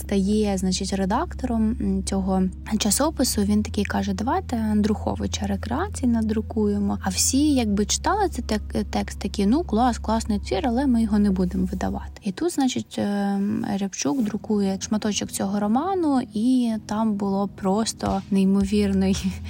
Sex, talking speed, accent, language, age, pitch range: female, 130 wpm, native, Ukrainian, 20-39, 195-250 Hz